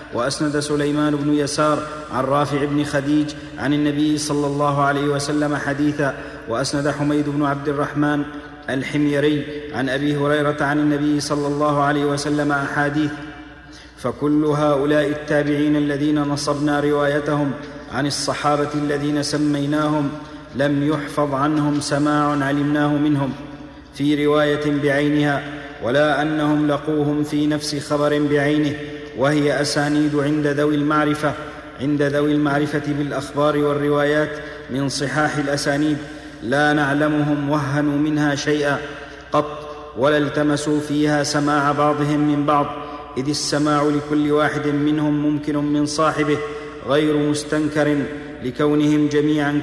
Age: 40-59